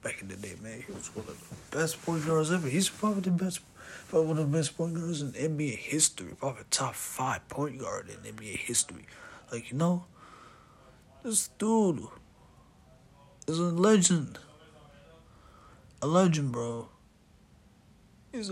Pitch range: 115-160 Hz